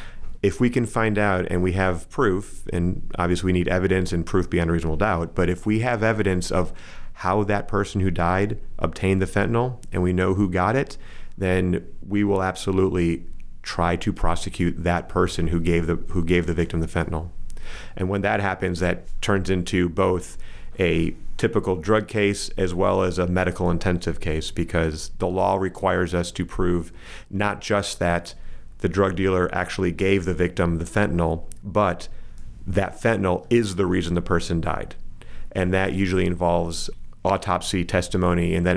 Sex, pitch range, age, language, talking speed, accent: male, 85-95 Hz, 30-49, English, 175 wpm, American